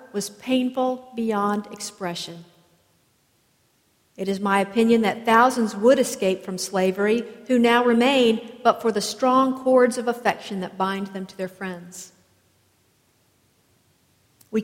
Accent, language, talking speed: American, English, 125 wpm